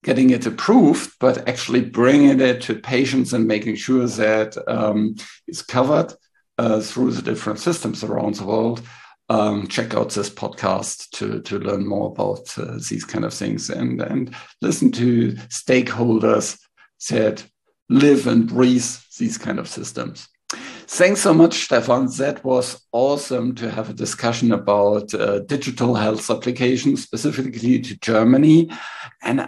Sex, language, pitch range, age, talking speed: male, English, 110-130 Hz, 60-79, 145 wpm